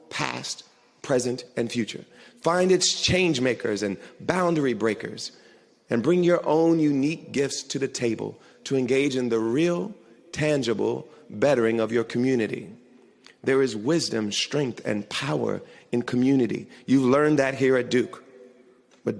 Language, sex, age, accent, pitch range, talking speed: English, male, 40-59, American, 120-150 Hz, 145 wpm